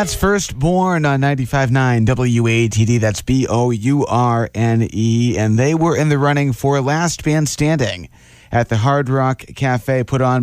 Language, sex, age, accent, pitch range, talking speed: English, male, 30-49, American, 120-150 Hz, 145 wpm